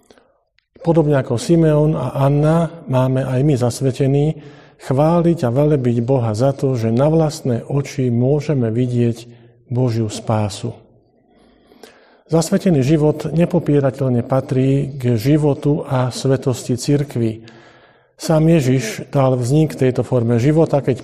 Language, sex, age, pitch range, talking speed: Slovak, male, 50-69, 125-150 Hz, 115 wpm